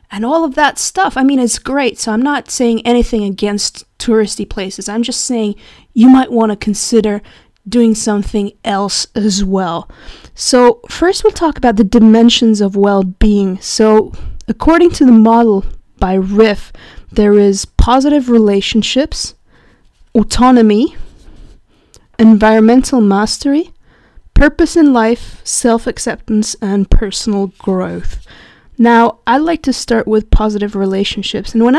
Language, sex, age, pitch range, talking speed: English, female, 20-39, 210-260 Hz, 130 wpm